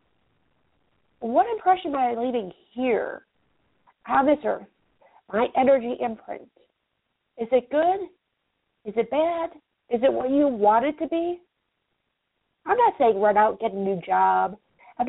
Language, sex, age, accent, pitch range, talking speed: English, female, 40-59, American, 215-280 Hz, 150 wpm